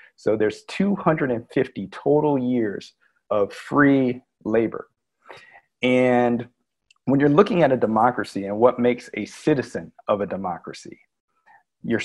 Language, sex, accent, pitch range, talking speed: English, male, American, 105-135 Hz, 120 wpm